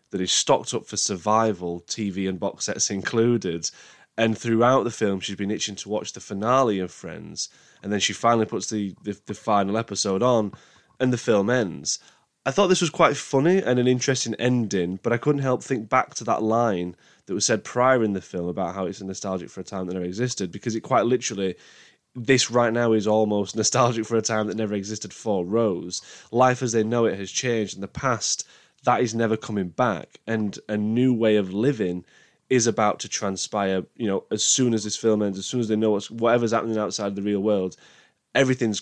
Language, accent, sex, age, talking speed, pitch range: English, British, male, 10-29, 215 wpm, 100-120 Hz